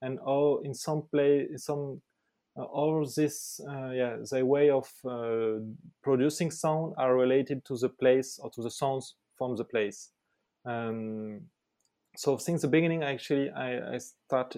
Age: 20-39